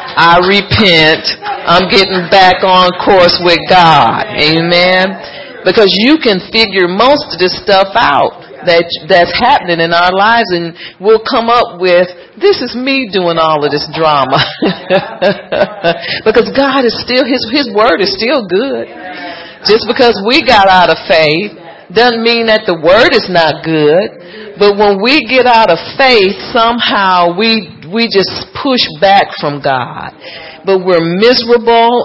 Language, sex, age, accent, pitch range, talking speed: English, female, 40-59, American, 175-235 Hz, 150 wpm